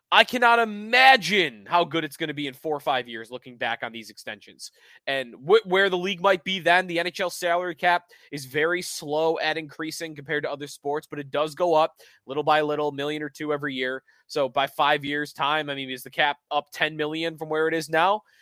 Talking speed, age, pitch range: 230 wpm, 20-39, 145-185 Hz